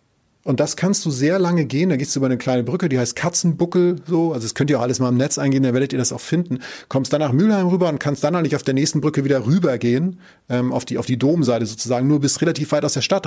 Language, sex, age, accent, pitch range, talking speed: German, male, 30-49, German, 130-165 Hz, 285 wpm